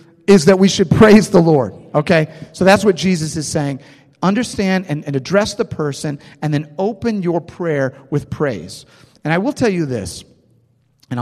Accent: American